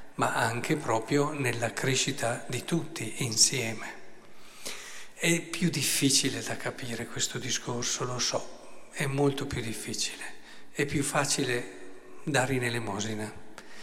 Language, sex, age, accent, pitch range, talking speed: Italian, male, 50-69, native, 125-155 Hz, 115 wpm